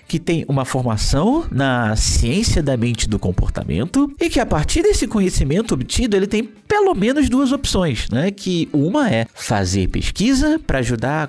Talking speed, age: 170 wpm, 30-49